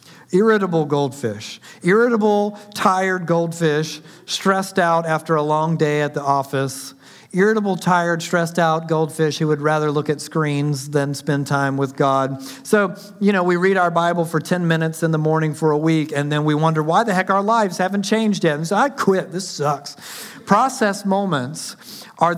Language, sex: English, male